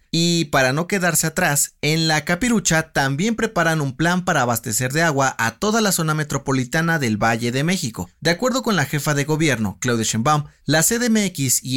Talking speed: 190 wpm